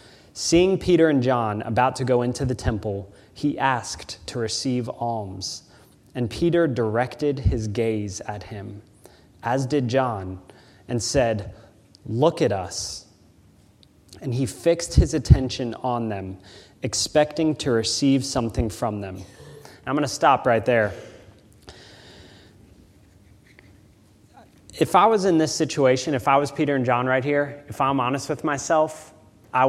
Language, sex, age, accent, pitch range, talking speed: English, male, 20-39, American, 105-145 Hz, 140 wpm